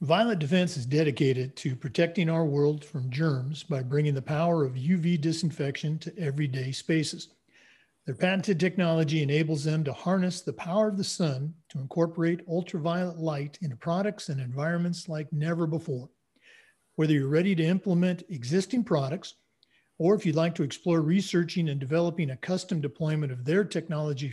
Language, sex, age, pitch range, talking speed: English, male, 50-69, 150-180 Hz, 160 wpm